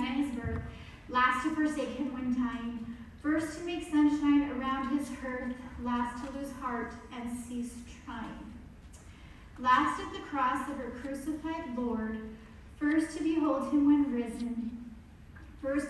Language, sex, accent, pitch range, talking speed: English, female, American, 260-330 Hz, 130 wpm